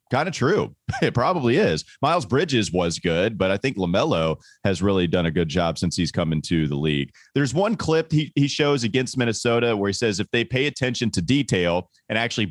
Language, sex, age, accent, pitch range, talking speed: English, male, 30-49, American, 95-130 Hz, 215 wpm